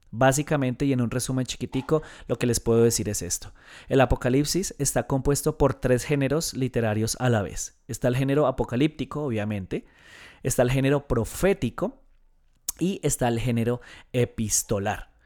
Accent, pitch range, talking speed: Colombian, 120-150 Hz, 150 wpm